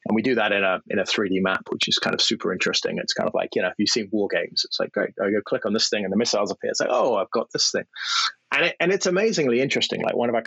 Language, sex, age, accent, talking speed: English, male, 30-49, British, 325 wpm